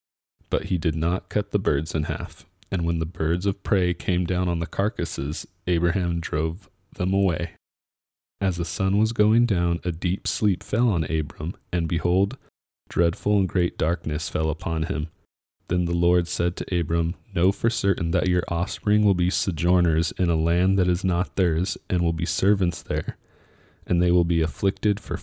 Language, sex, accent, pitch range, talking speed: English, male, American, 80-95 Hz, 185 wpm